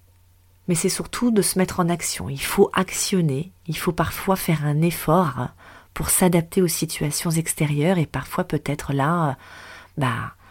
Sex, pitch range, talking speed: female, 125-175 Hz, 155 wpm